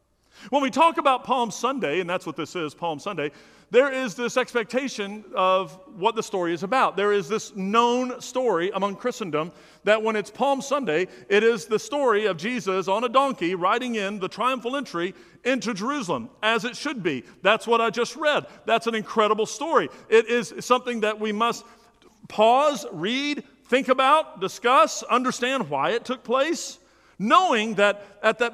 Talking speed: 175 wpm